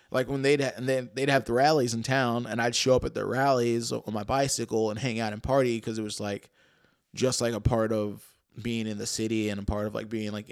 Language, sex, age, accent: English, male, 20-39, American